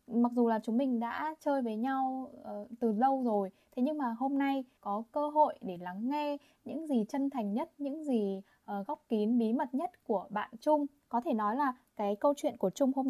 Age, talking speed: 10-29, 230 wpm